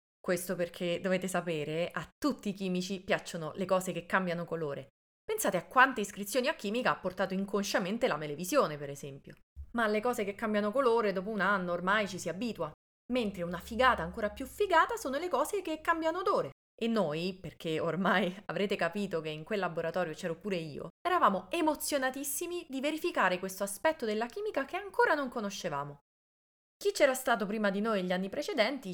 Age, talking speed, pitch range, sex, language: 20-39, 180 wpm, 180-260 Hz, female, Italian